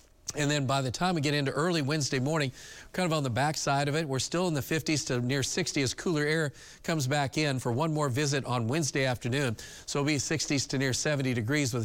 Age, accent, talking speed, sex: 40-59, American, 240 wpm, male